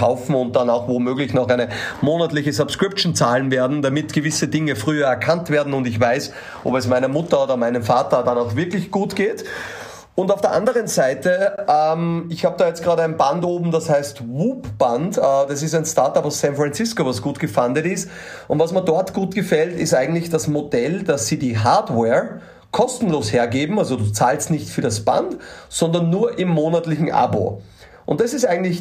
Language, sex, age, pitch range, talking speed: German, male, 30-49, 125-170 Hz, 190 wpm